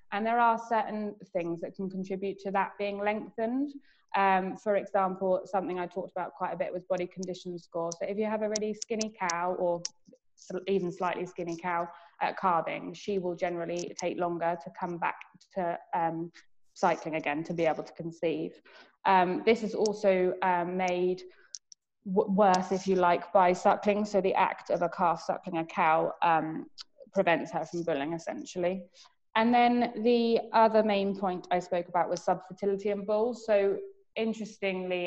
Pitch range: 180-210 Hz